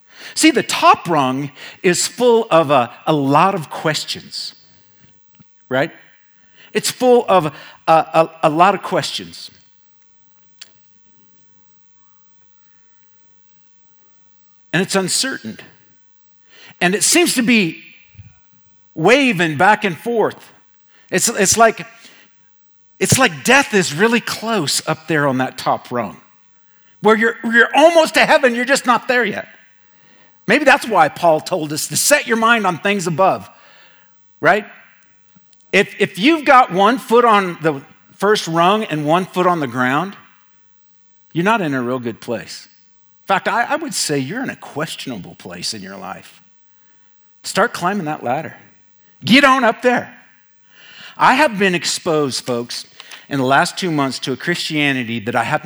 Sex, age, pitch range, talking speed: male, 50-69, 150-230 Hz, 145 wpm